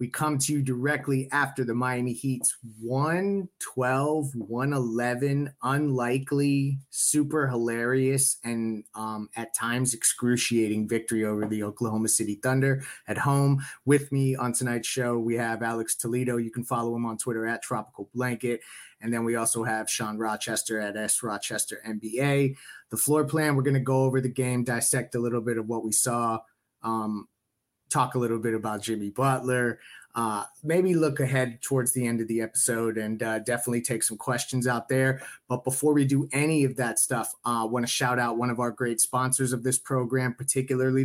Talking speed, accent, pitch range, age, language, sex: 175 wpm, American, 115-135 Hz, 30-49, English, male